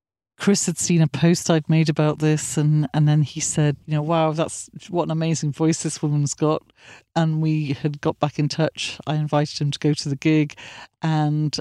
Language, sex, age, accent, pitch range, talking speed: English, female, 40-59, British, 145-165 Hz, 210 wpm